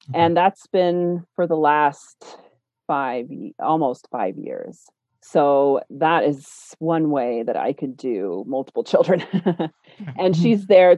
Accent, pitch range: American, 150-190 Hz